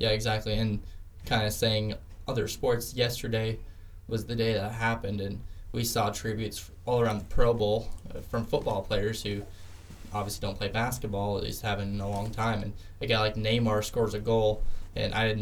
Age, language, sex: 10-29, English, male